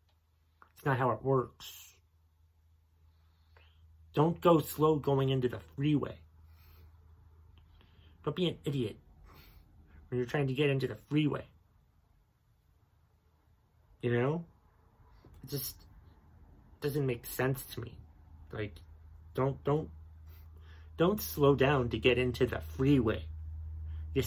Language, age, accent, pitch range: English, 30-49, American, 85-135 Hz